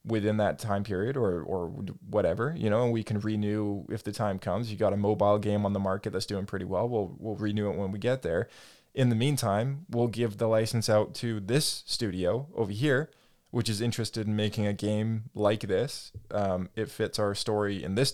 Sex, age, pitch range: male, 20-39, 100-115 Hz